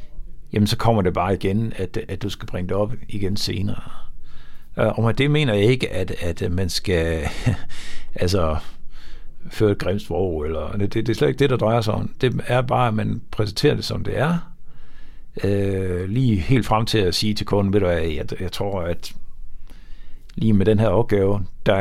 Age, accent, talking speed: 60-79, native, 195 wpm